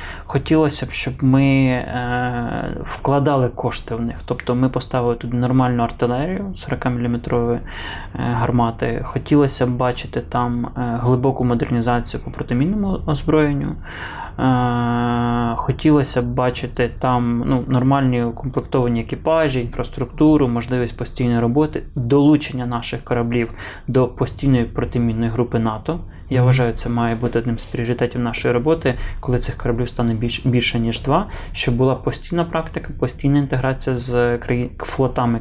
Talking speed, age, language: 120 wpm, 20-39, Ukrainian